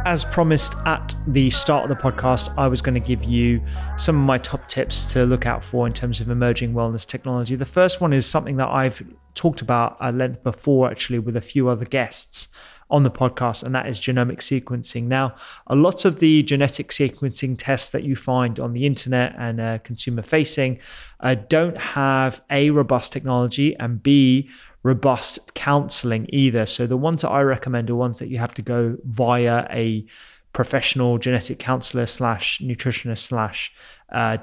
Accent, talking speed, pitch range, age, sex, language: British, 185 wpm, 120-135 Hz, 30-49, male, English